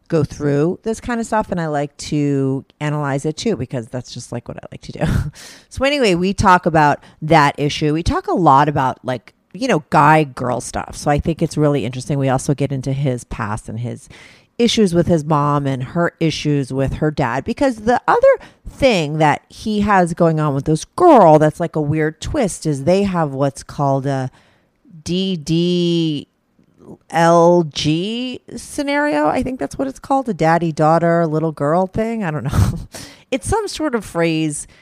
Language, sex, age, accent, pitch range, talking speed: English, female, 30-49, American, 145-190 Hz, 190 wpm